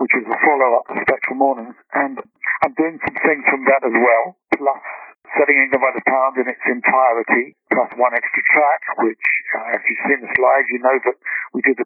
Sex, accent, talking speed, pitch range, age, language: male, British, 220 wpm, 125-140 Hz, 60-79, English